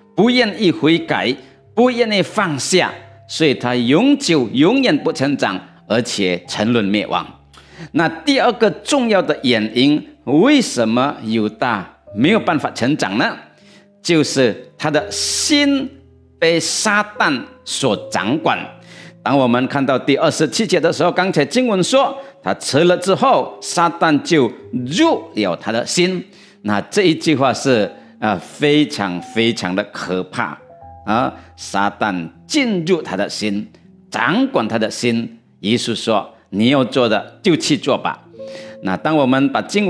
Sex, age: male, 50-69